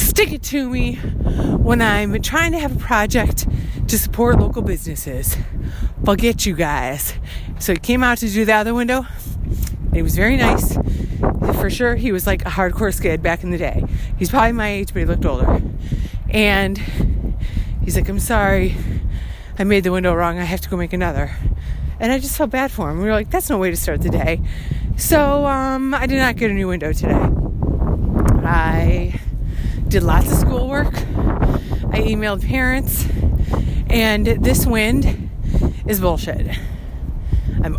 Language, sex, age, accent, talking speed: English, female, 30-49, American, 180 wpm